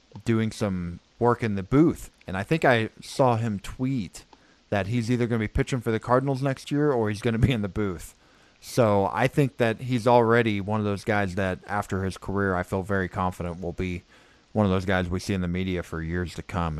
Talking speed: 235 wpm